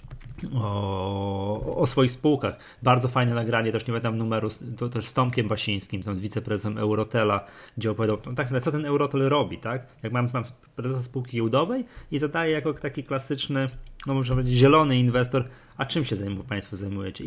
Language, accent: Polish, native